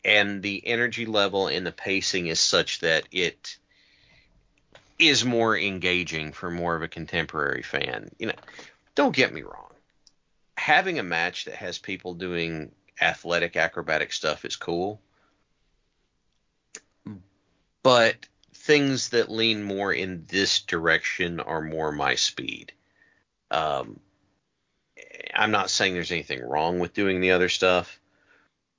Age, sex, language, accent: 40-59, male, English, American